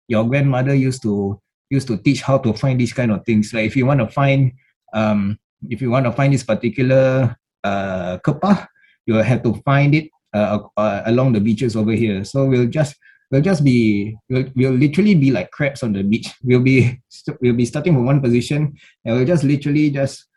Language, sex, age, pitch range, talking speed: English, male, 20-39, 110-140 Hz, 205 wpm